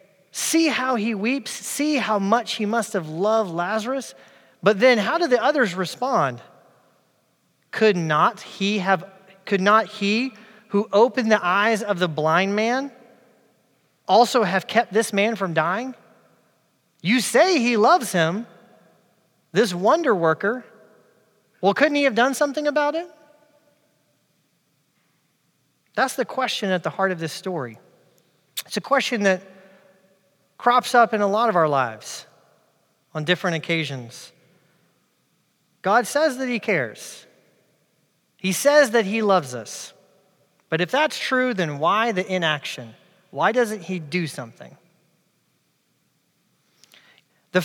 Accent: American